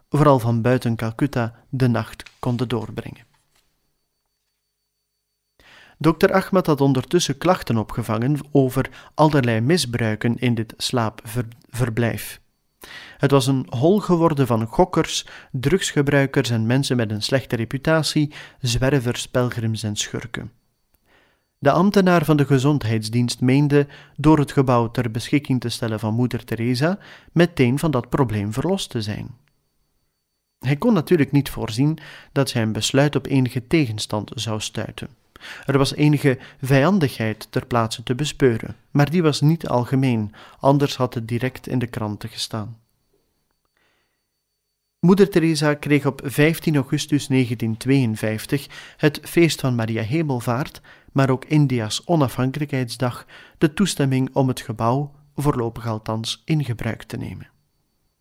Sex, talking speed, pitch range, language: male, 125 wpm, 120-145 Hz, Dutch